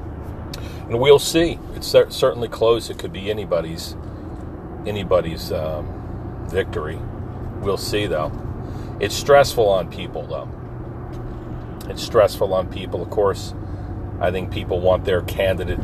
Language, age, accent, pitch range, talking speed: English, 40-59, American, 90-105 Hz, 125 wpm